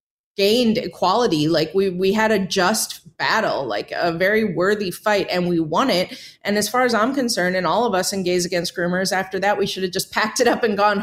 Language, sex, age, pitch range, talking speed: English, female, 30-49, 180-215 Hz, 235 wpm